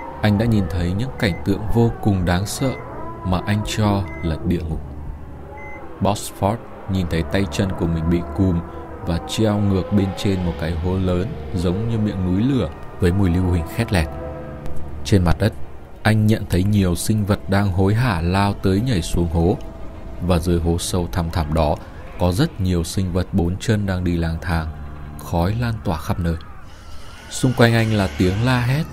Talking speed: 195 wpm